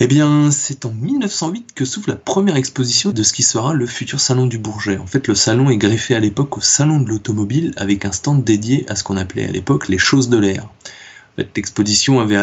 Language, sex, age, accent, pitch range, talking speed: French, male, 20-39, French, 100-130 Hz, 240 wpm